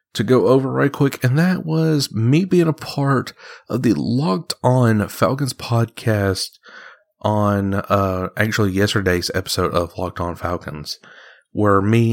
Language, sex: English, male